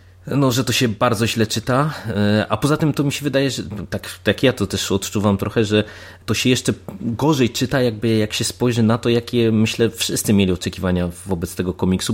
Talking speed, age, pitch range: 210 wpm, 20-39, 95-115 Hz